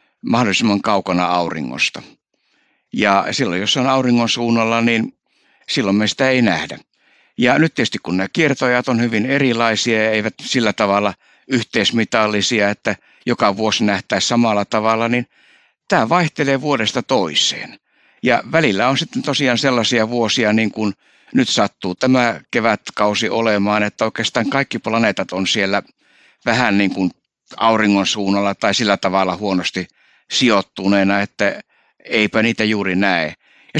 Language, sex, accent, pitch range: Finnish, male, native, 105-125 Hz